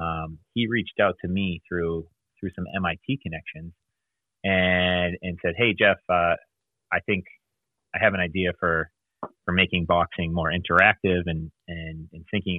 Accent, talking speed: American, 150 wpm